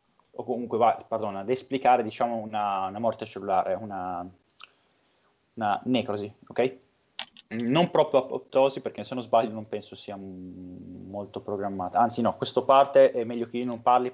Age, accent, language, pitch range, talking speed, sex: 20-39, native, Italian, 110-135 Hz, 165 wpm, male